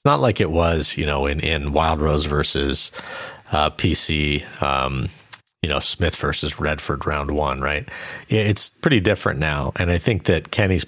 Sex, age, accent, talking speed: male, 40-59, American, 175 wpm